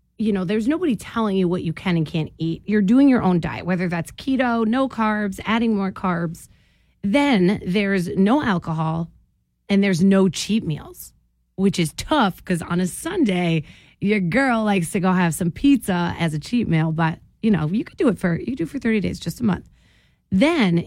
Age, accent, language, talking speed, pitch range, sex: 30-49, American, English, 200 wpm, 170-225 Hz, female